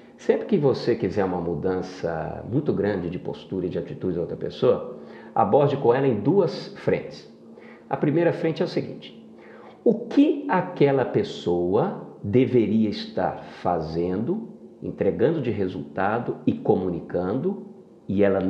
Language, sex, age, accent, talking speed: Portuguese, male, 50-69, Brazilian, 135 wpm